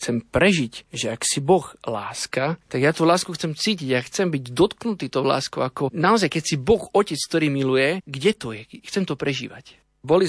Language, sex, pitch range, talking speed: Slovak, male, 120-140 Hz, 205 wpm